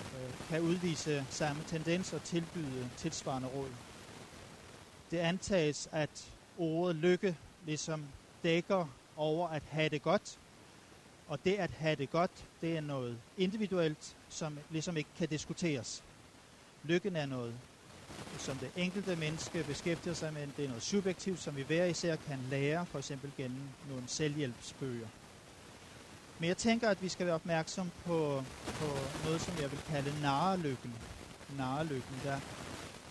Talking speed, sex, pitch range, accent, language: 145 wpm, male, 140-170 Hz, native, Danish